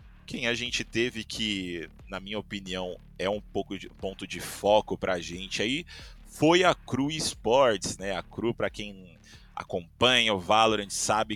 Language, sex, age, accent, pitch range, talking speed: Portuguese, male, 30-49, Brazilian, 95-125 Hz, 165 wpm